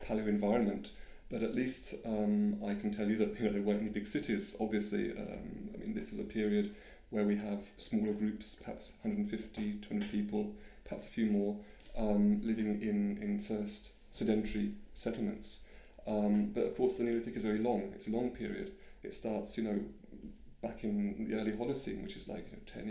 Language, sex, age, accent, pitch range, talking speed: English, male, 30-49, British, 105-130 Hz, 190 wpm